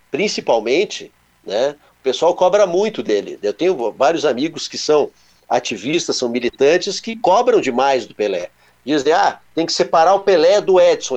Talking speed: 160 wpm